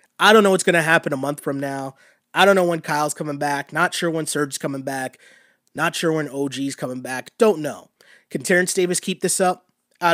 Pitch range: 145-175 Hz